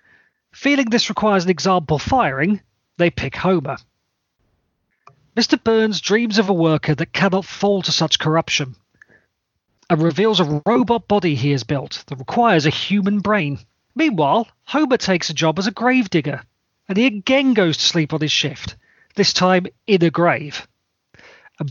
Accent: British